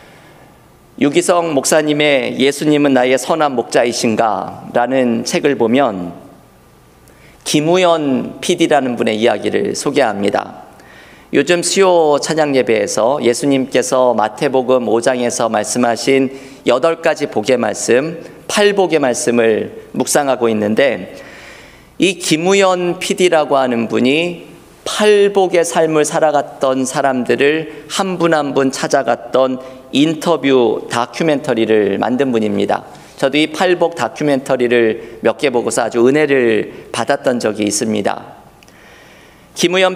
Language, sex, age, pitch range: Korean, male, 40-59, 125-165 Hz